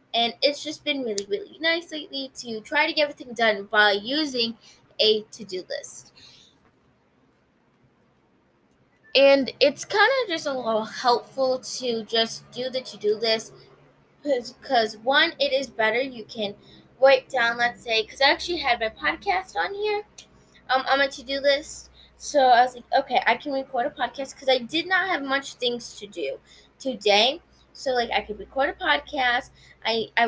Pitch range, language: 220-285 Hz, English